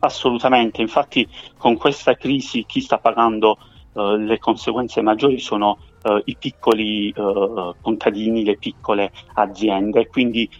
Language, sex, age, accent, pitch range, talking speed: Italian, male, 30-49, native, 100-115 Hz, 130 wpm